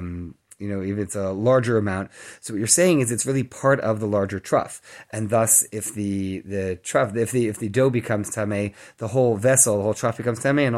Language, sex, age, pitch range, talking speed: English, male, 30-49, 105-135 Hz, 235 wpm